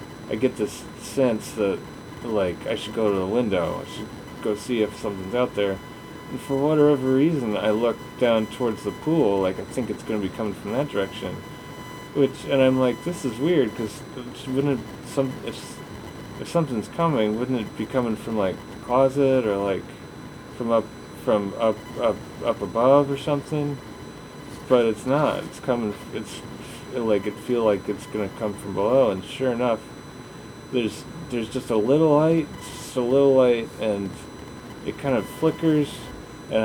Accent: American